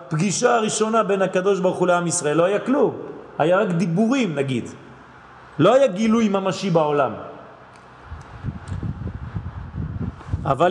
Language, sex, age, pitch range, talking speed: French, male, 30-49, 135-200 Hz, 110 wpm